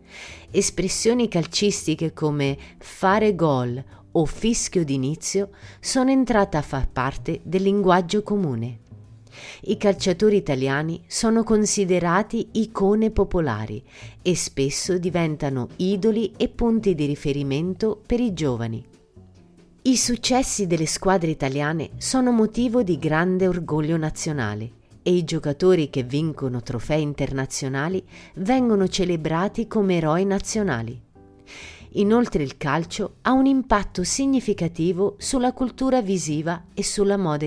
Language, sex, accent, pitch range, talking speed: Italian, female, native, 135-200 Hz, 110 wpm